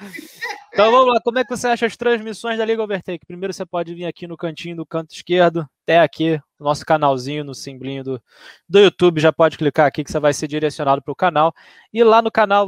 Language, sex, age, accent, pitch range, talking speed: Portuguese, male, 20-39, Brazilian, 150-190 Hz, 225 wpm